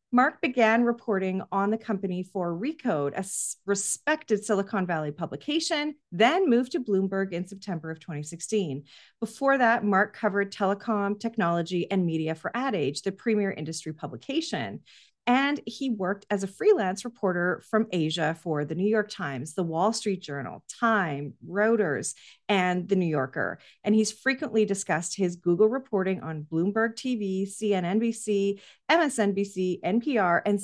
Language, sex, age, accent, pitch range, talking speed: English, female, 40-59, American, 185-265 Hz, 145 wpm